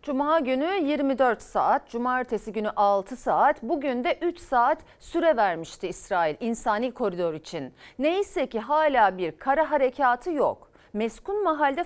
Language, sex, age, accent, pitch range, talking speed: Turkish, female, 40-59, native, 230-315 Hz, 135 wpm